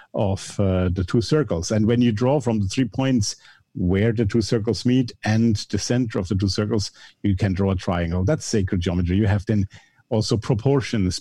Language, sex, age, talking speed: English, male, 50-69, 205 wpm